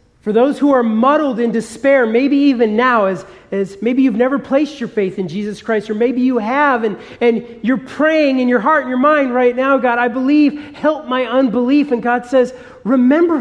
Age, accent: 40-59, American